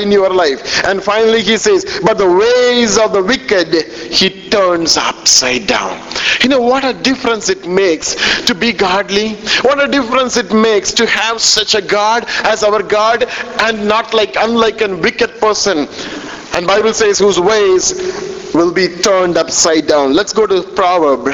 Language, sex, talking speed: English, male, 175 wpm